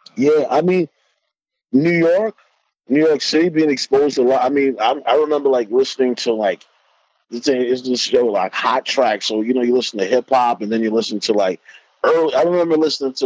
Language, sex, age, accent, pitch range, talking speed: English, male, 30-49, American, 110-145 Hz, 210 wpm